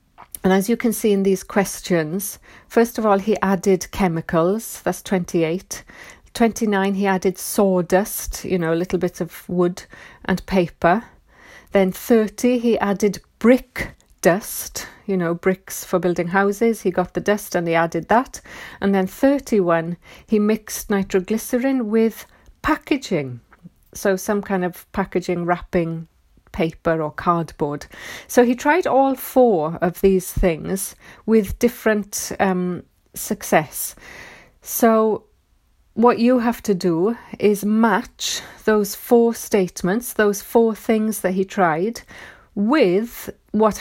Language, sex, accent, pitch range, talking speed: English, female, British, 180-225 Hz, 130 wpm